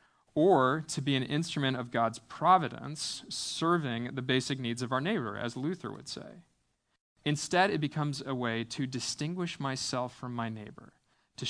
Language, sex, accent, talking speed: English, male, American, 160 wpm